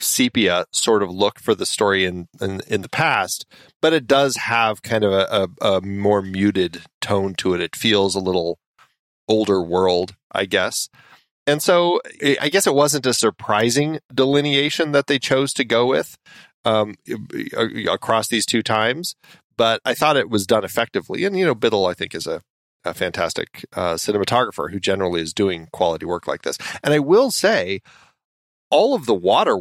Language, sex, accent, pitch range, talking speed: English, male, American, 95-125 Hz, 180 wpm